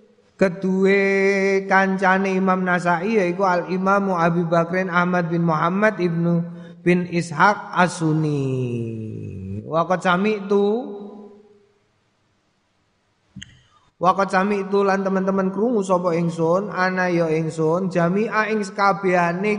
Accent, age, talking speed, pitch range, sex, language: native, 20-39, 95 wpm, 175-200 Hz, male, Indonesian